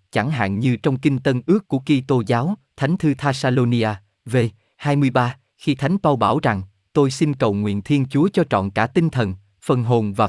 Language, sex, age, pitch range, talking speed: Vietnamese, male, 20-39, 110-155 Hz, 200 wpm